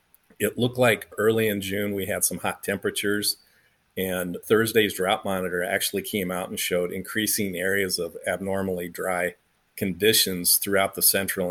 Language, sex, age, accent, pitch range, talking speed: English, male, 40-59, American, 90-100 Hz, 150 wpm